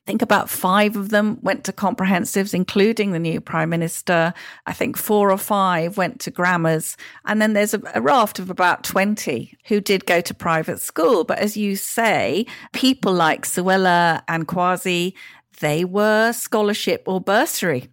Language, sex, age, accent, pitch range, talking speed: English, female, 40-59, British, 170-210 Hz, 165 wpm